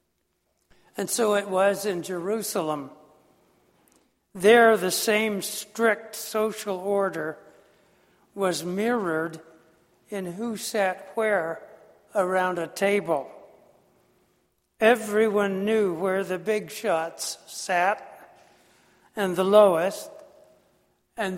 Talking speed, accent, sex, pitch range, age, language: 90 wpm, American, male, 180-210 Hz, 60-79, English